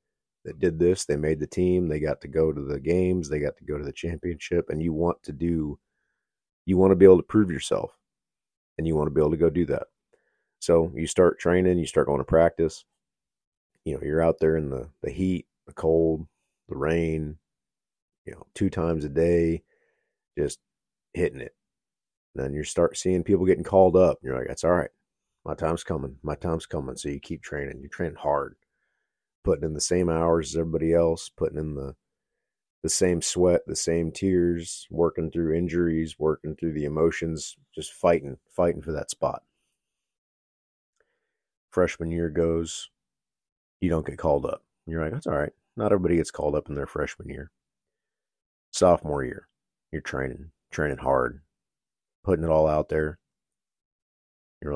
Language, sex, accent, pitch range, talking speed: English, male, American, 75-85 Hz, 180 wpm